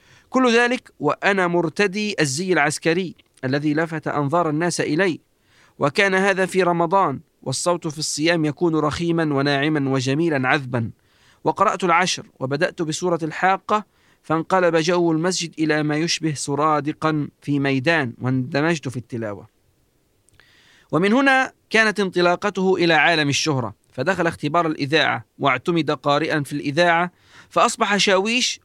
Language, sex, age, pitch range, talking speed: Arabic, male, 40-59, 125-175 Hz, 115 wpm